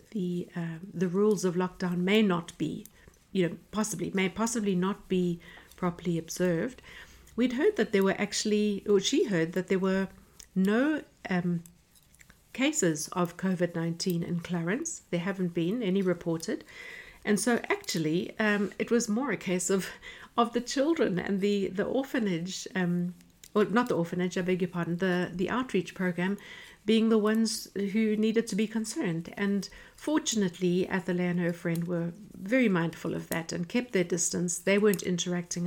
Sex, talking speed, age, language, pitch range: female, 165 wpm, 60-79, English, 175-215 Hz